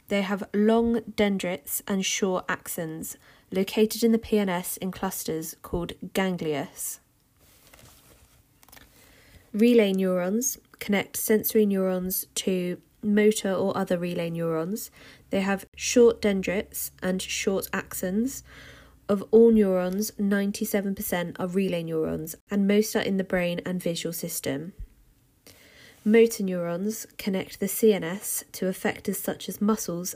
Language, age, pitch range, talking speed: English, 20-39, 180-215 Hz, 115 wpm